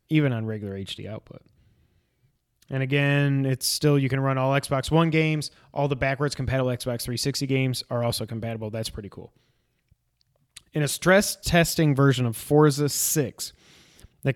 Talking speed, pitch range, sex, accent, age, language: 160 wpm, 120-145 Hz, male, American, 20-39, English